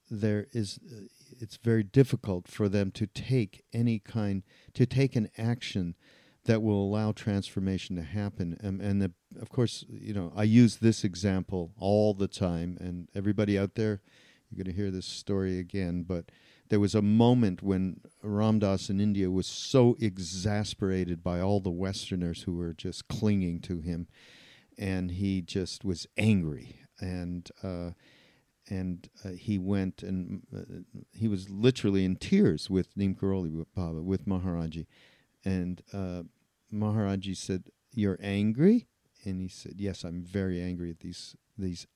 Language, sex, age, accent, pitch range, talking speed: English, male, 50-69, American, 90-110 Hz, 155 wpm